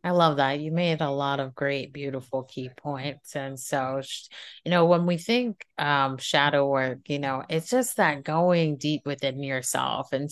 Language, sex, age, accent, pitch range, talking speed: English, female, 30-49, American, 140-165 Hz, 185 wpm